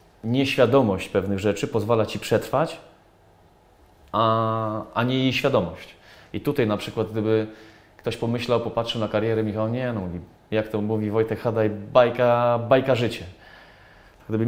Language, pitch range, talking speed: Polish, 105-125 Hz, 135 wpm